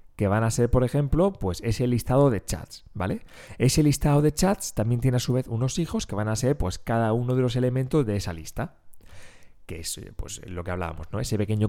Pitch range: 105-140 Hz